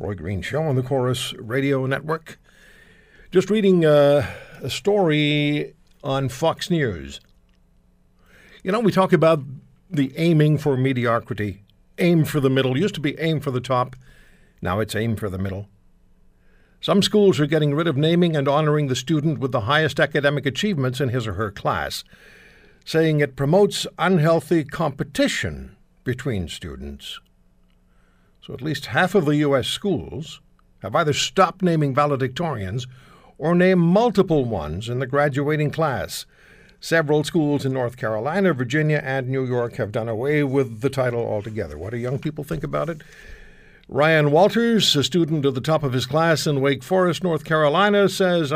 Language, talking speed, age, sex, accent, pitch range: English, 160 wpm, 60-79, male, American, 120-160 Hz